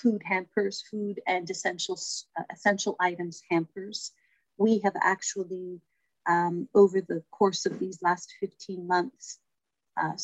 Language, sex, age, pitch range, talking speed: English, female, 40-59, 175-200 Hz, 125 wpm